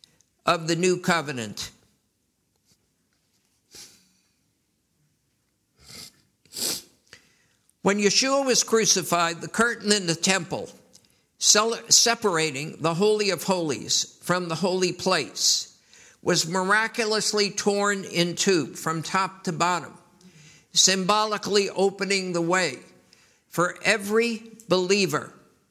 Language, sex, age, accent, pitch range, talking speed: English, male, 60-79, American, 170-210 Hz, 90 wpm